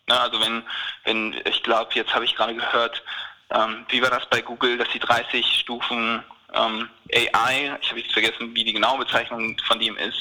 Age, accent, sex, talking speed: 20-39, German, male, 195 wpm